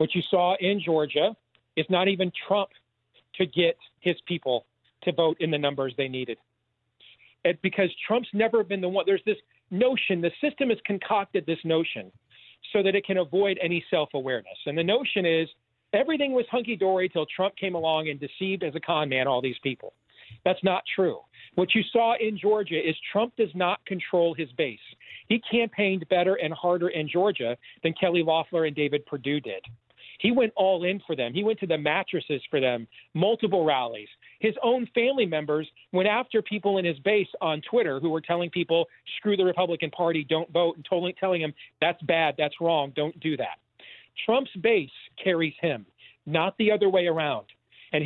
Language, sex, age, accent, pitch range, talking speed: English, male, 40-59, American, 160-205 Hz, 185 wpm